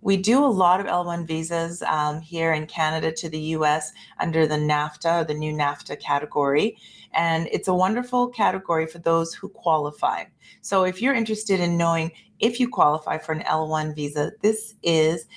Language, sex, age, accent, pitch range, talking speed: English, female, 30-49, American, 160-205 Hz, 175 wpm